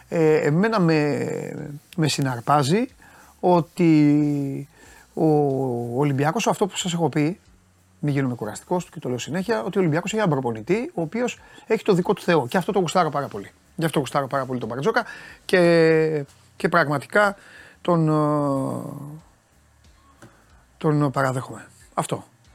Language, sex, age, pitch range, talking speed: Greek, male, 30-49, 145-195 Hz, 140 wpm